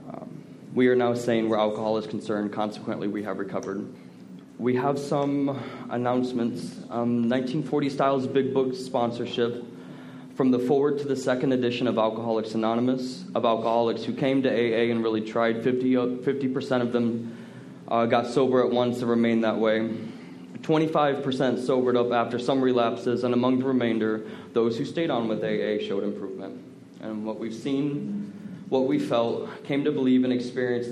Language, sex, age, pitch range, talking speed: English, male, 20-39, 115-130 Hz, 165 wpm